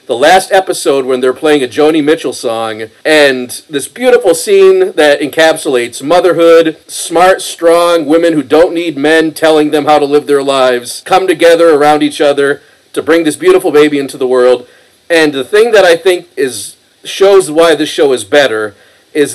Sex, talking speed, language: male, 180 wpm, English